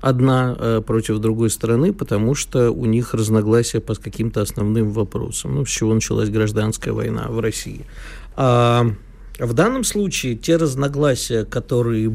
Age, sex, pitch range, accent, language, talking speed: 50-69, male, 110-130 Hz, native, Russian, 145 wpm